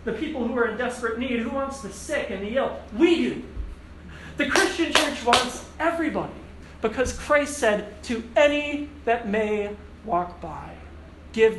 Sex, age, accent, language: male, 40-59, American, English